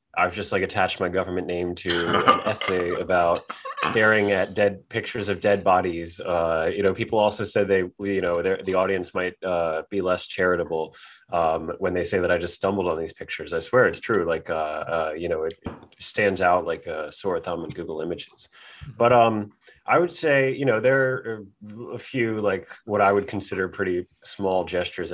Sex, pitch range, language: male, 85-105 Hz, English